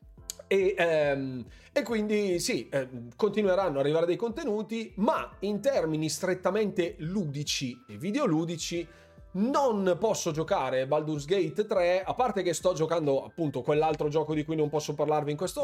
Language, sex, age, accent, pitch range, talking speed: Italian, male, 30-49, native, 140-185 Hz, 155 wpm